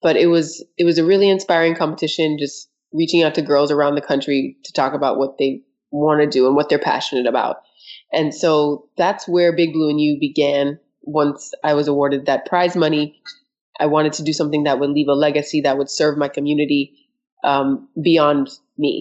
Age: 20-39